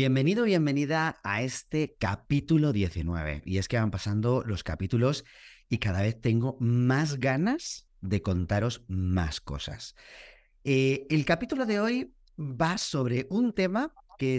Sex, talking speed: male, 140 wpm